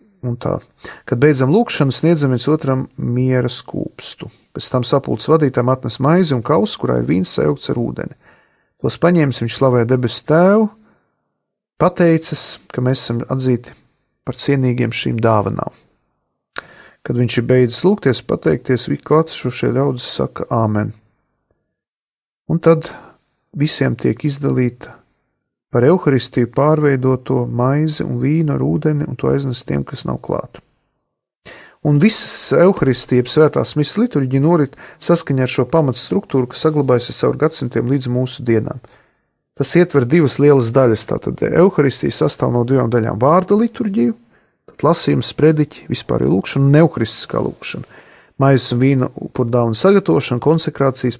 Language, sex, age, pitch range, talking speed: English, male, 40-59, 125-155 Hz, 130 wpm